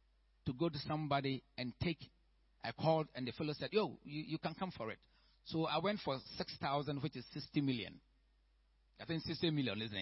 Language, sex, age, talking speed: English, male, 50-69, 200 wpm